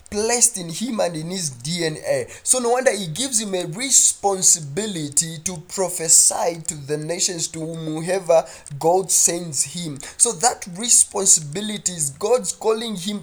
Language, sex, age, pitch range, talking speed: English, male, 20-39, 165-240 Hz, 145 wpm